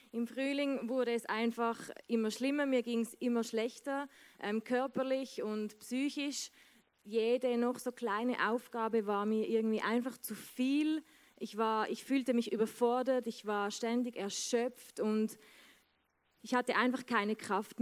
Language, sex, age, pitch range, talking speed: German, female, 20-39, 210-245 Hz, 145 wpm